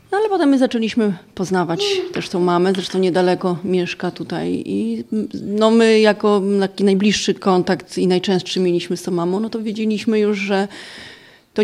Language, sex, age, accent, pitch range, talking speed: Polish, female, 30-49, native, 175-220 Hz, 165 wpm